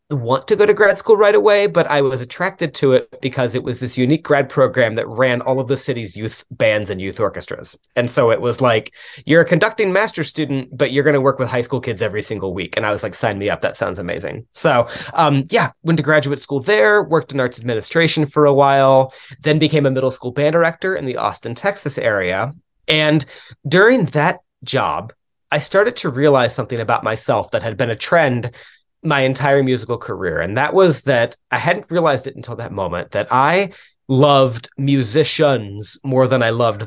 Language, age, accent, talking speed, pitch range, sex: English, 30-49, American, 210 wpm, 120-155 Hz, male